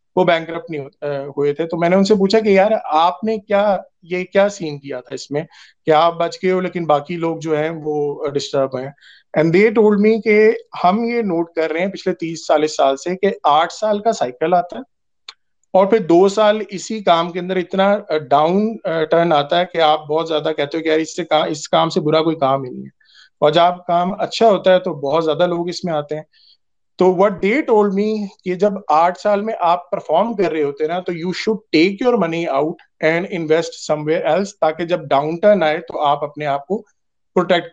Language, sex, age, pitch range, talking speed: Urdu, male, 30-49, 155-200 Hz, 180 wpm